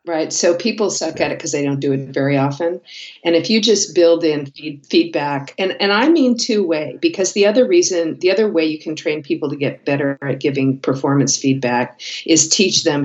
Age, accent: 50-69, American